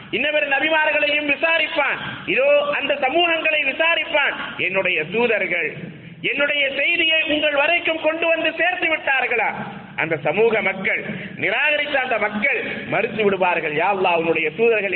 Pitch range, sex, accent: 170-280 Hz, male, native